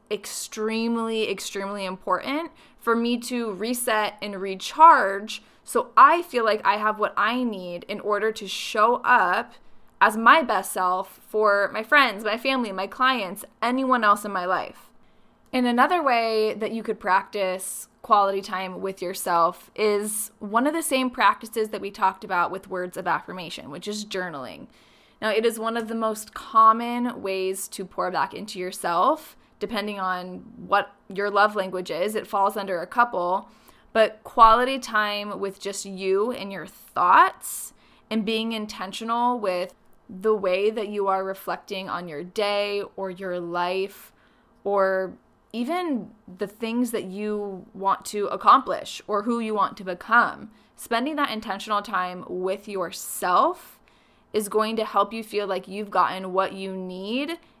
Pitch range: 190-230 Hz